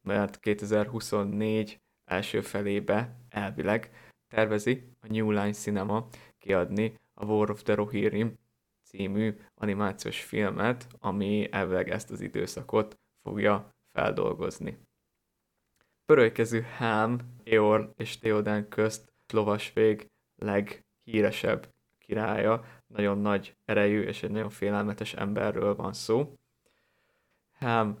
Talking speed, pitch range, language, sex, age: 100 wpm, 105-115 Hz, Hungarian, male, 20-39